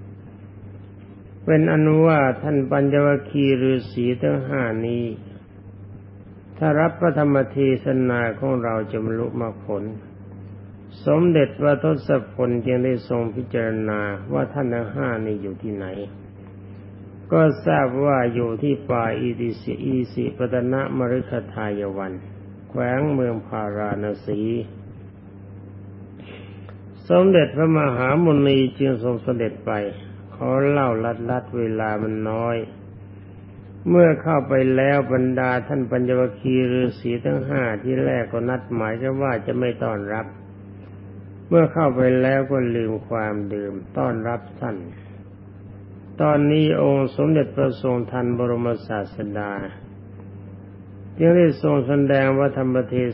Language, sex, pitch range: Thai, male, 100-130 Hz